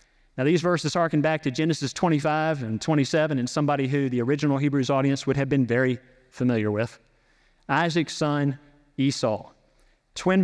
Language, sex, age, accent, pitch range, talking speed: English, male, 40-59, American, 120-155 Hz, 155 wpm